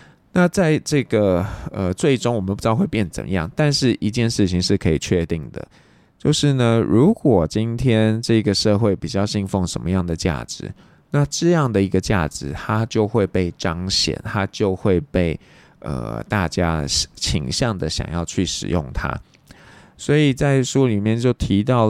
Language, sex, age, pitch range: Chinese, male, 20-39, 90-125 Hz